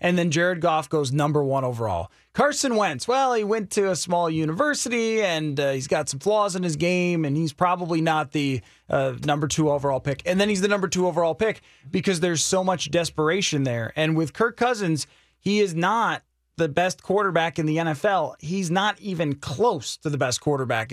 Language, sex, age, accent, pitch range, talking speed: English, male, 30-49, American, 145-190 Hz, 205 wpm